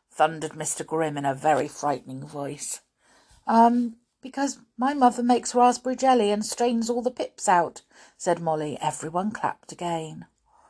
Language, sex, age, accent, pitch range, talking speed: English, female, 50-69, British, 155-235 Hz, 145 wpm